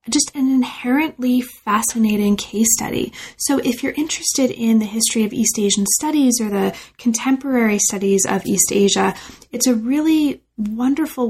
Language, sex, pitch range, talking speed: English, female, 205-250 Hz, 150 wpm